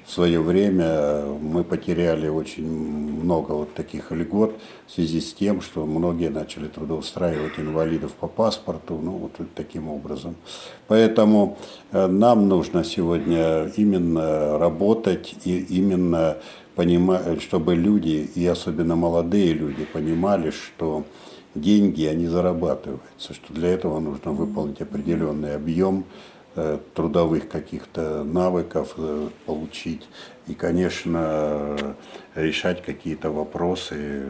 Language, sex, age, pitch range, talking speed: Russian, male, 60-79, 80-90 Hz, 105 wpm